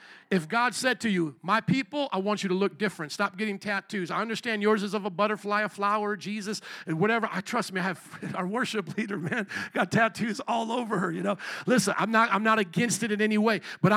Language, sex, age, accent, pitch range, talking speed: English, male, 50-69, American, 190-230 Hz, 235 wpm